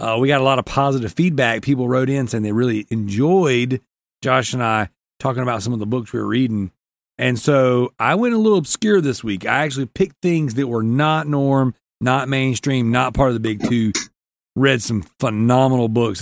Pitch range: 110-140 Hz